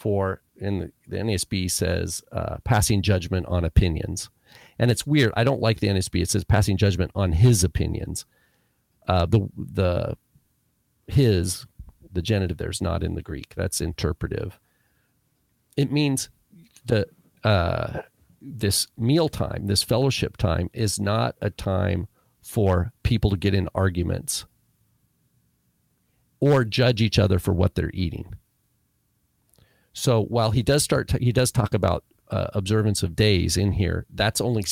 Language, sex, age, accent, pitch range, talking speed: English, male, 40-59, American, 95-115 Hz, 145 wpm